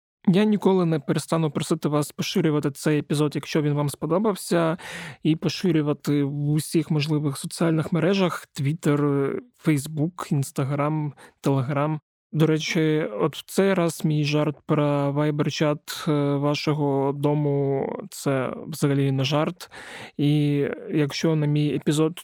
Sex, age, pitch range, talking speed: male, 20-39, 145-165 Hz, 125 wpm